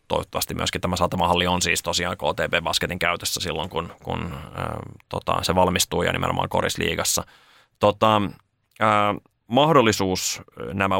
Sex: male